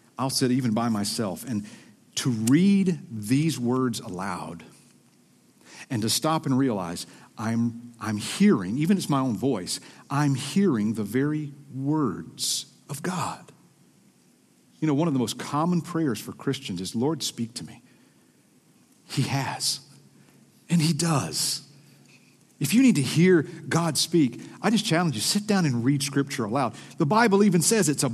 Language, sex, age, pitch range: English, male, 50-69, 130-190 Hz